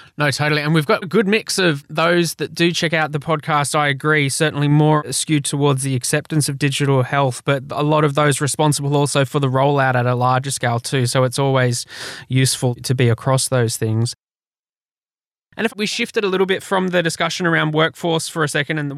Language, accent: English, Australian